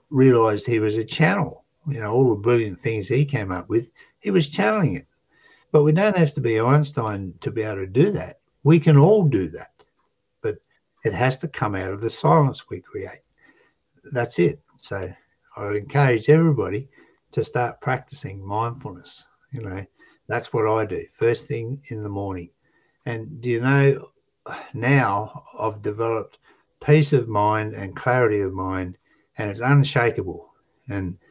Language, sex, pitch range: English, male, 105-145 Hz